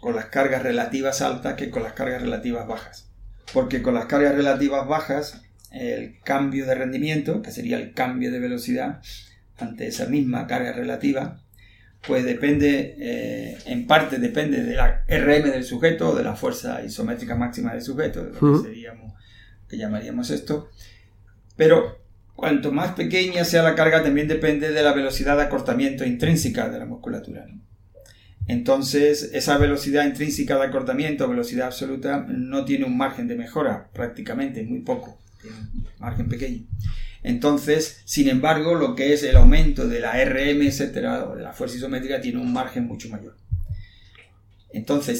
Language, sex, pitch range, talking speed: Spanish, male, 115-170 Hz, 155 wpm